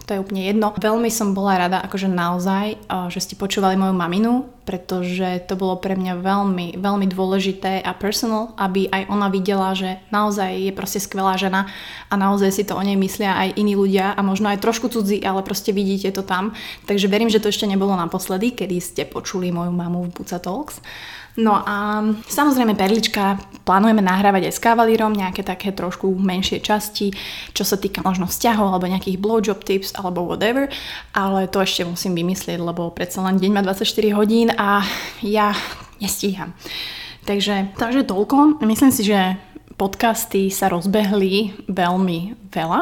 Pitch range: 190-220 Hz